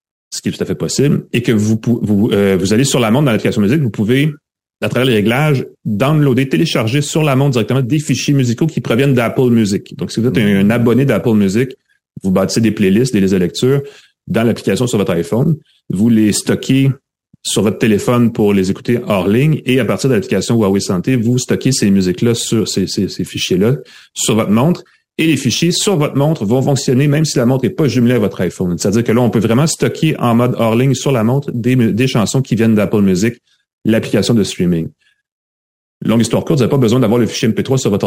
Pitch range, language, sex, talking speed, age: 105-140 Hz, French, male, 230 wpm, 30-49